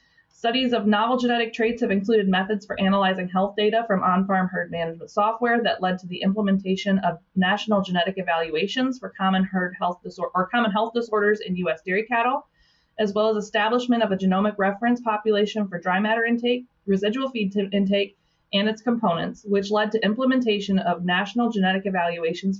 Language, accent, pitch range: English, American, 185-220 Hz